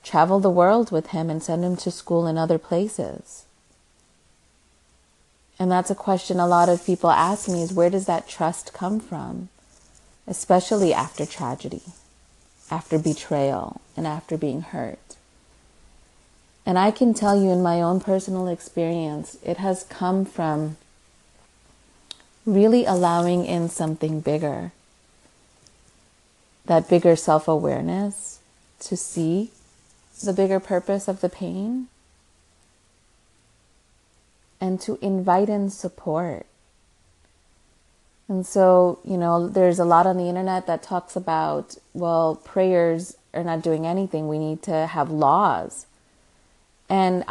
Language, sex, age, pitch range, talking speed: English, female, 30-49, 140-185 Hz, 125 wpm